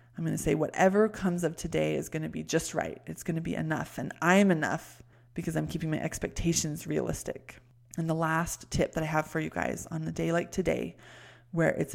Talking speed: 230 wpm